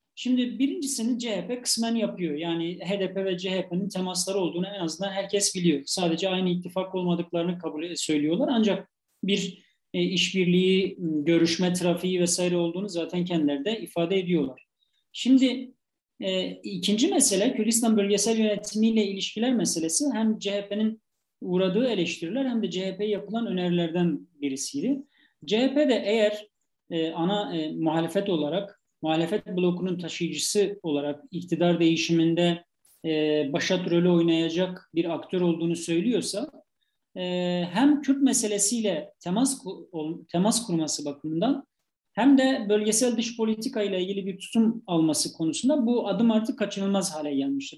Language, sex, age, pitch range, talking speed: Turkish, male, 40-59, 170-220 Hz, 125 wpm